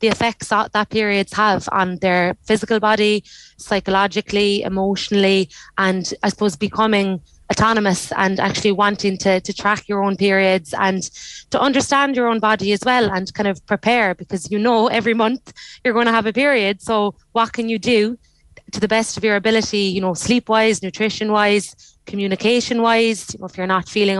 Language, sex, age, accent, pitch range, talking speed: English, female, 20-39, Irish, 195-225 Hz, 175 wpm